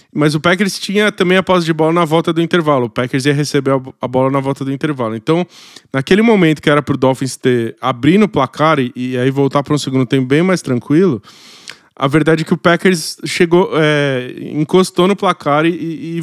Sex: male